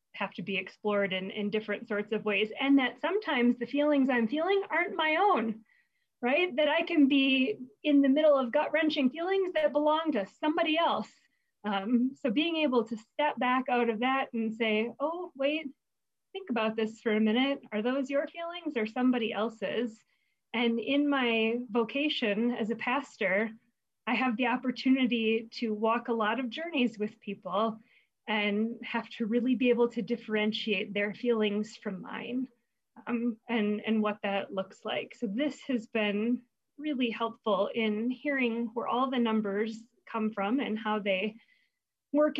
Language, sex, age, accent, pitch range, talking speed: English, female, 30-49, American, 215-265 Hz, 170 wpm